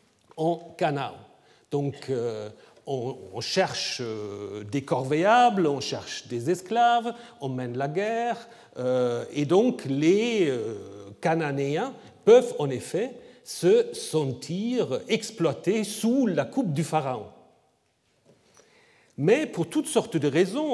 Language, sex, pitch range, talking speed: French, male, 140-225 Hz, 115 wpm